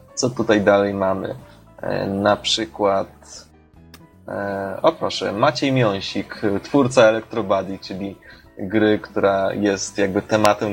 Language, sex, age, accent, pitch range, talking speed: Polish, male, 20-39, native, 105-130 Hz, 100 wpm